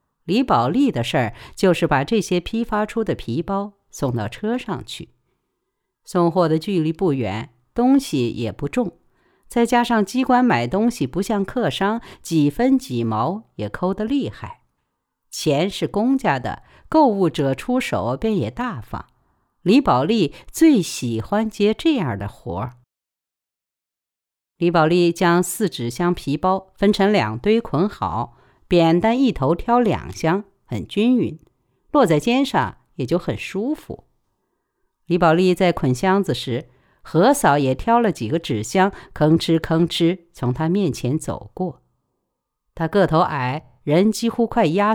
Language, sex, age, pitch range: Chinese, female, 50-69, 140-220 Hz